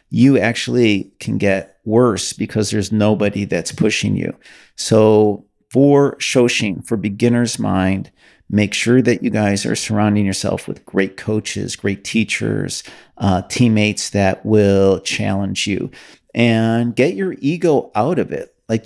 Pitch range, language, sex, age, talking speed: 100-125 Hz, English, male, 40-59, 140 wpm